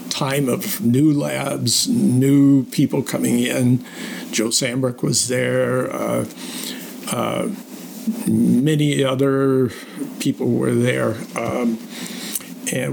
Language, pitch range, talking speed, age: English, 125-200 Hz, 95 wpm, 60-79